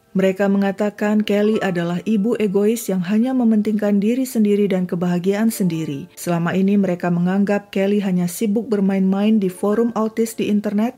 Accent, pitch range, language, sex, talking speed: native, 185-220 Hz, Indonesian, female, 150 wpm